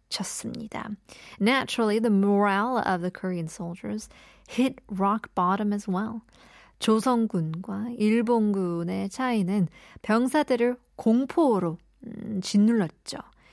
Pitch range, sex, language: 185-230 Hz, female, Korean